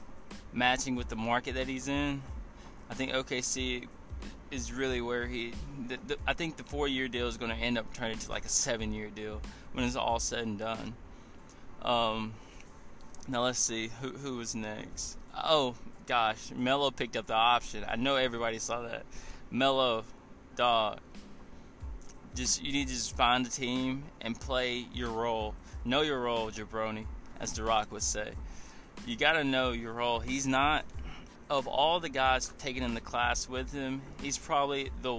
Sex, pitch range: male, 110-130 Hz